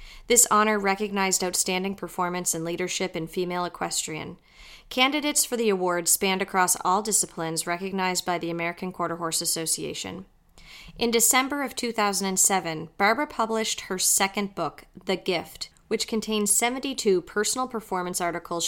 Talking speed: 135 wpm